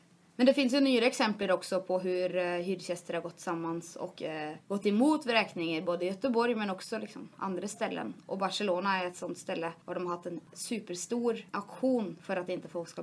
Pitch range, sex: 170-200 Hz, female